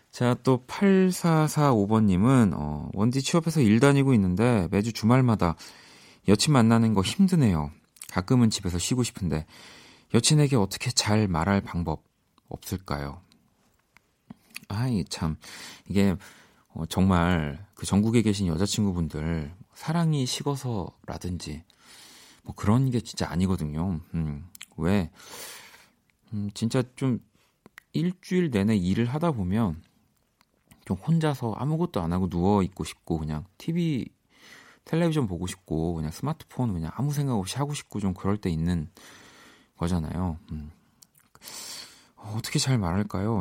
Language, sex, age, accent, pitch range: Korean, male, 40-59, native, 90-125 Hz